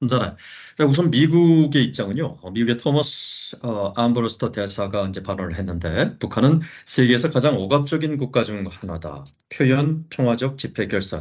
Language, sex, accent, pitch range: Korean, male, native, 100-140 Hz